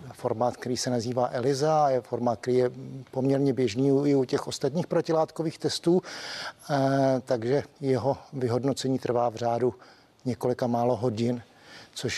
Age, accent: 50-69, native